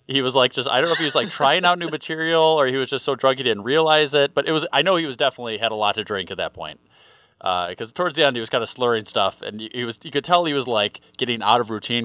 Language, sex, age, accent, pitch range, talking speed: English, male, 30-49, American, 110-130 Hz, 310 wpm